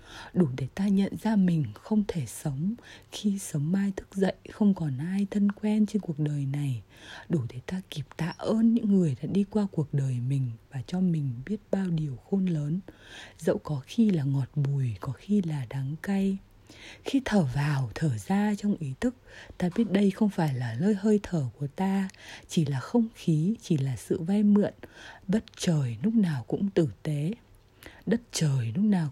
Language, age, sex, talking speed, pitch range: English, 20-39, female, 195 wpm, 145-205 Hz